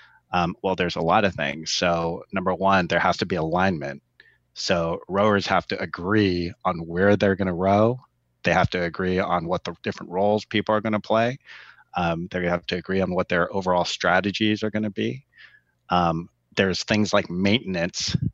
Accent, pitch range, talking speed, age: American, 90-110 Hz, 195 wpm, 30-49